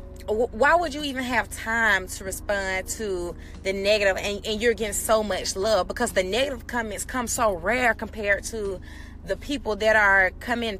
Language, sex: English, female